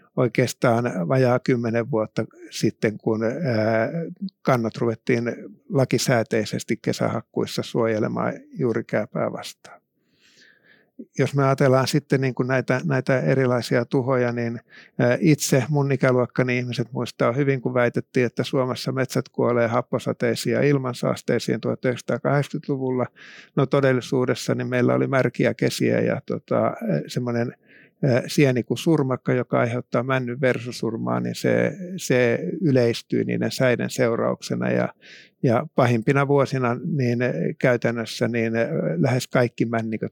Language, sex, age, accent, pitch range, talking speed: Finnish, male, 50-69, native, 120-135 Hz, 105 wpm